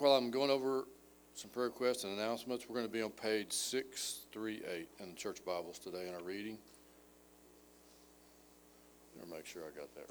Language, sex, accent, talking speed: English, male, American, 190 wpm